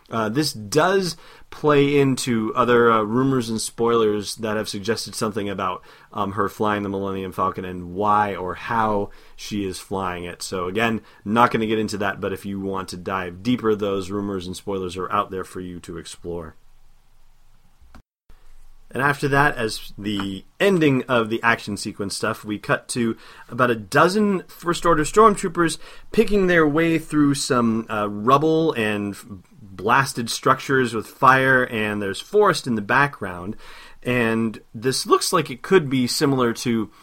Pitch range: 105-140 Hz